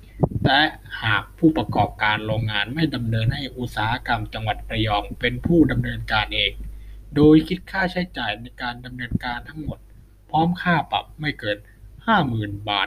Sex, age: male, 20-39